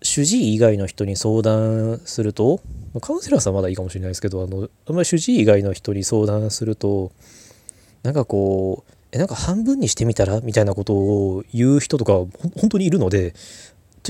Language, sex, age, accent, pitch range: Japanese, male, 20-39, native, 95-115 Hz